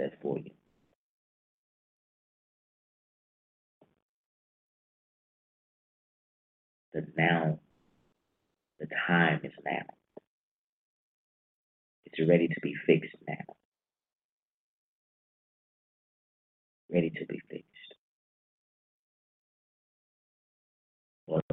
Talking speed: 55 wpm